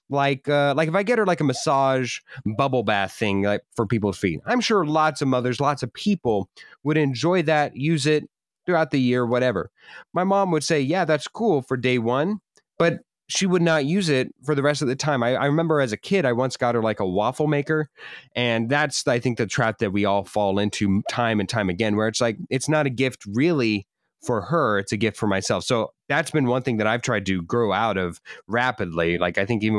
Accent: American